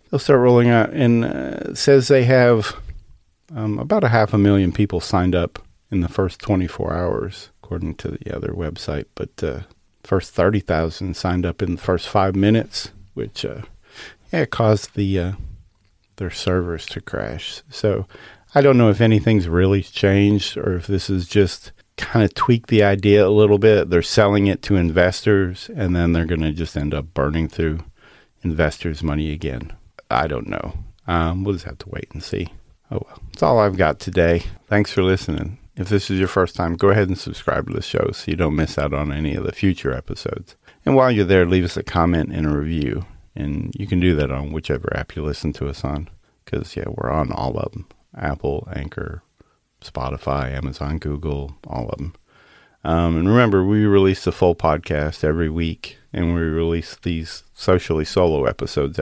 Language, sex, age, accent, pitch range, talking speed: English, male, 40-59, American, 80-100 Hz, 195 wpm